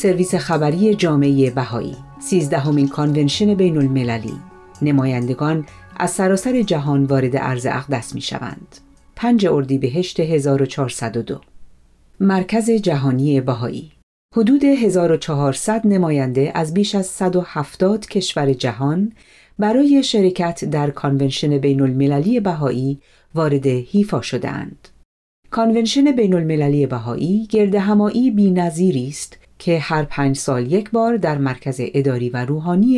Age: 40-59